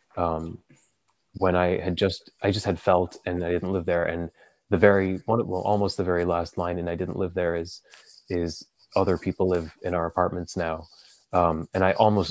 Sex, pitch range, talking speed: male, 90-100 Hz, 205 wpm